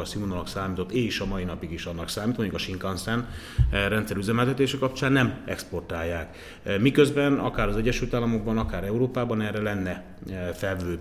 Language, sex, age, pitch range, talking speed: Hungarian, male, 30-49, 95-115 Hz, 145 wpm